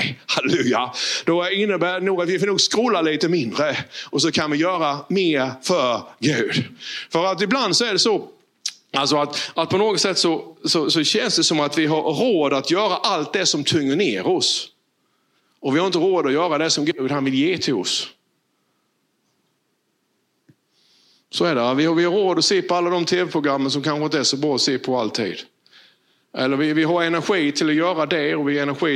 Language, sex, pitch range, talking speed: Swedish, male, 130-175 Hz, 215 wpm